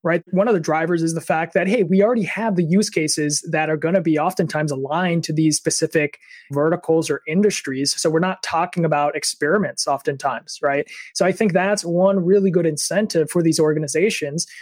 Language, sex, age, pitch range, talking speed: English, male, 20-39, 160-195 Hz, 195 wpm